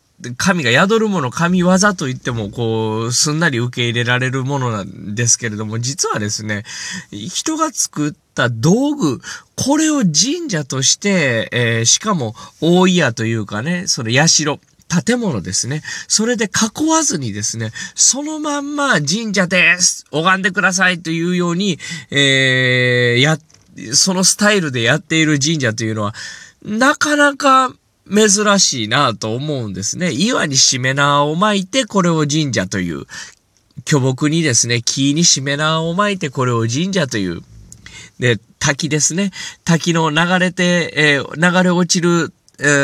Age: 20-39